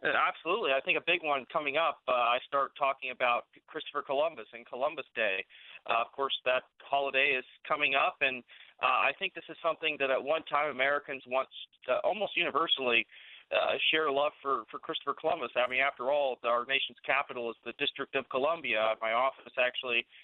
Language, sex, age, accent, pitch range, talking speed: English, male, 40-59, American, 125-150 Hz, 185 wpm